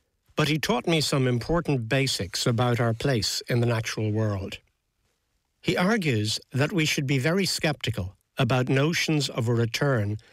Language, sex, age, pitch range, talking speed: English, male, 60-79, 110-150 Hz, 155 wpm